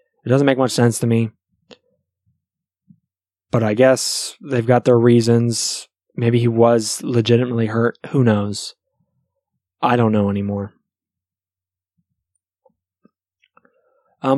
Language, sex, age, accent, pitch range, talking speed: English, male, 20-39, American, 105-130 Hz, 110 wpm